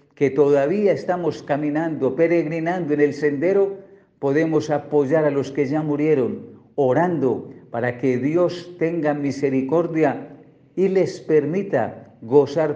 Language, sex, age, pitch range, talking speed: Spanish, male, 50-69, 130-155 Hz, 120 wpm